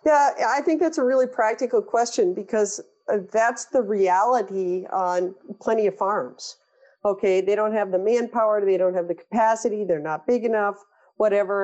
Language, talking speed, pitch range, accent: English, 165 wpm, 195-275 Hz, American